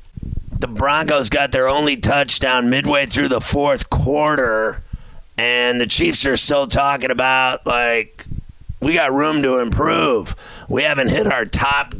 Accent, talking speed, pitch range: American, 145 wpm, 120-140 Hz